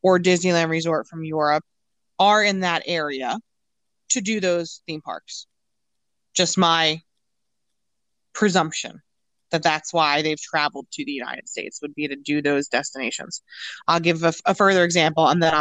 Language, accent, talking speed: English, American, 155 wpm